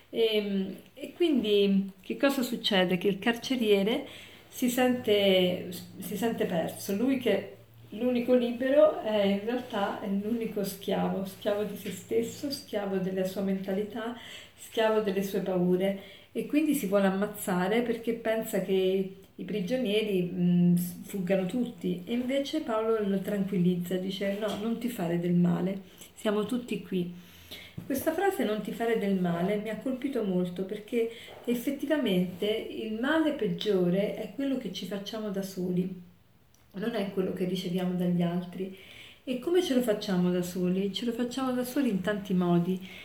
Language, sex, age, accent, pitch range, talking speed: Italian, female, 40-59, native, 190-230 Hz, 155 wpm